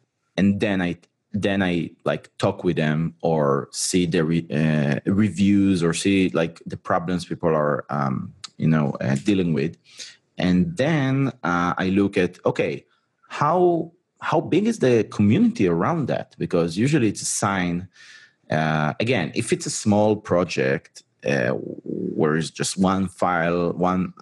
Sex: male